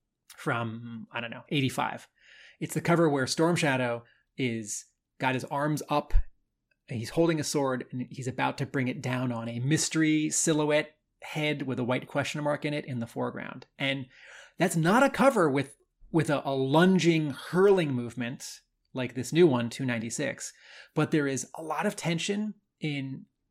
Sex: male